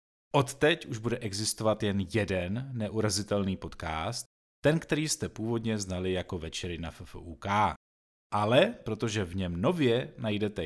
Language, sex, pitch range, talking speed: Czech, male, 90-125 Hz, 130 wpm